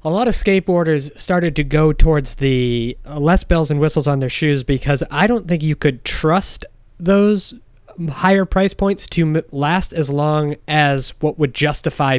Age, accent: 20-39, American